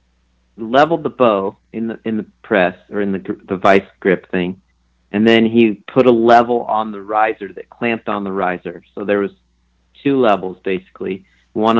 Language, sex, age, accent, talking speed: English, male, 40-59, American, 185 wpm